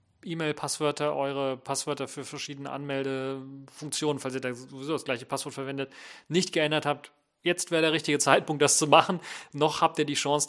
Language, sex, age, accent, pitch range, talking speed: German, male, 40-59, German, 130-155 Hz, 170 wpm